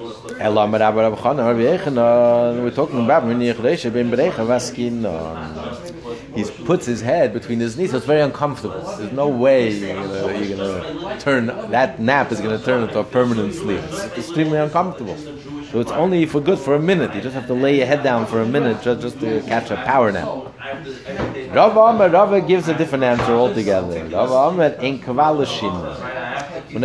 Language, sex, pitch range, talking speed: English, male, 120-170 Hz, 150 wpm